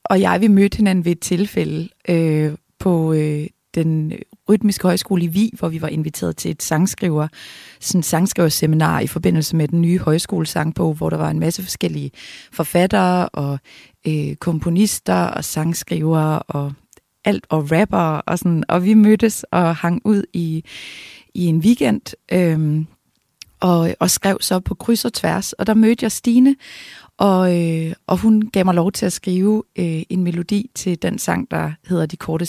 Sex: female